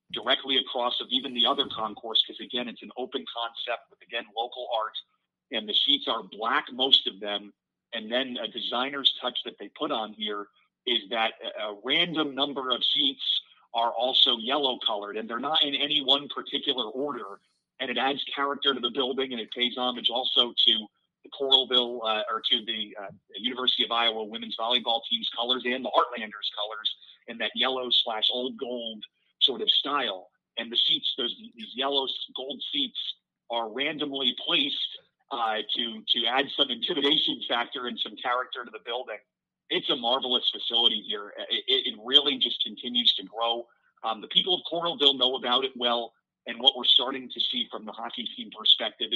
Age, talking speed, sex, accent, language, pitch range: 40-59, 180 wpm, male, American, English, 115-140 Hz